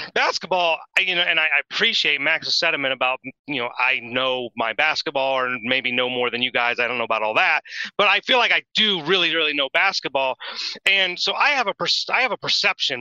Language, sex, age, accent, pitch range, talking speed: English, male, 30-49, American, 150-190 Hz, 225 wpm